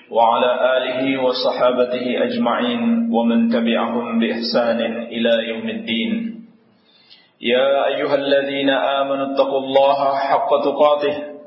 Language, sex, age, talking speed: Indonesian, male, 40-59, 80 wpm